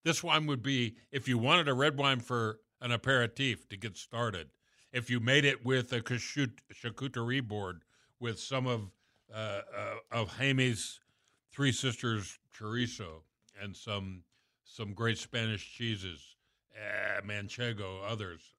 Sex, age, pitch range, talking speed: male, 60-79, 105-130 Hz, 140 wpm